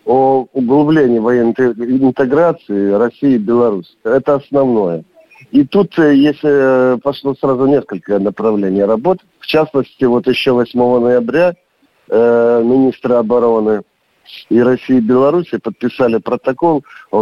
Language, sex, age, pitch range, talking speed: Russian, male, 50-69, 110-135 Hz, 110 wpm